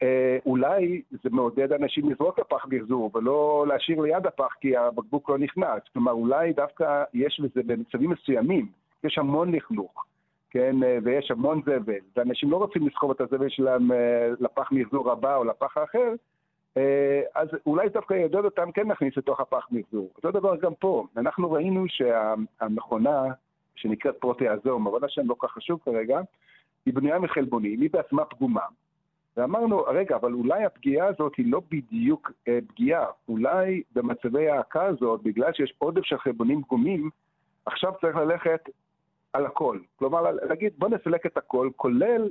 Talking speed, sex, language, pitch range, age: 150 wpm, male, Hebrew, 125-180 Hz, 50-69